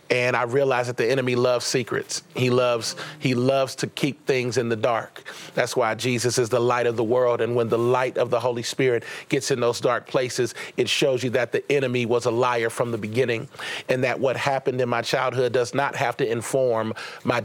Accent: American